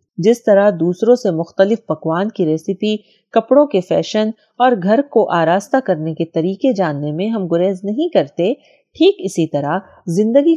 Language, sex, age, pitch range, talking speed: Urdu, female, 30-49, 165-215 Hz, 160 wpm